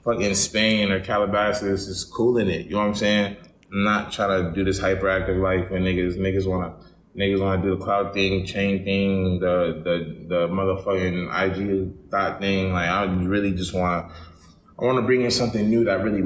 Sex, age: male, 20-39